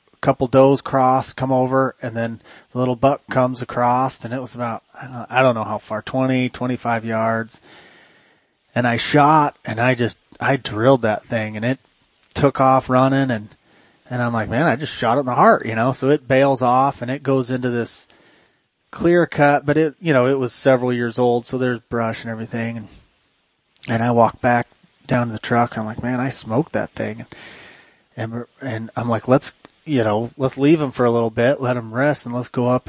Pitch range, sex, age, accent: 115-130 Hz, male, 30-49, American